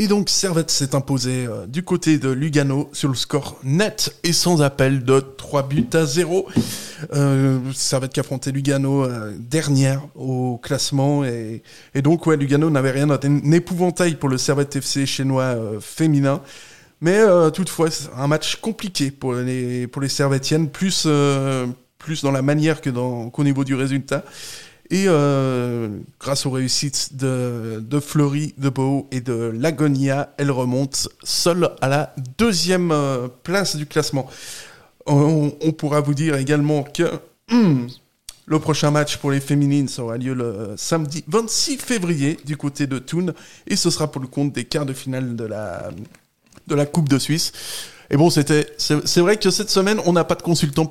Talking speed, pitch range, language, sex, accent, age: 175 wpm, 135-160 Hz, French, male, French, 20-39